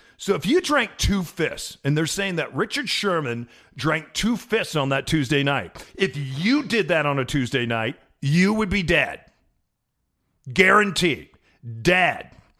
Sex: male